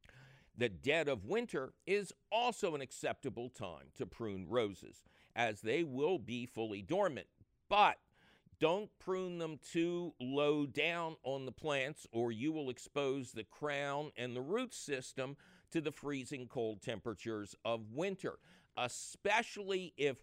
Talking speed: 140 wpm